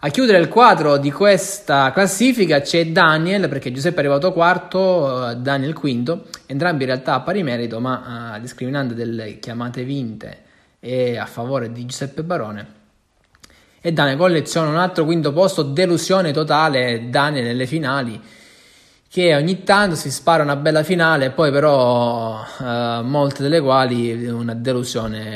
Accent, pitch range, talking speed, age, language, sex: native, 125-170 Hz, 145 wpm, 20-39, Italian, male